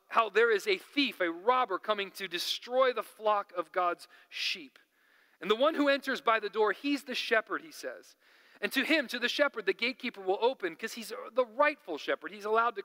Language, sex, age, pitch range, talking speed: English, male, 40-59, 180-280 Hz, 215 wpm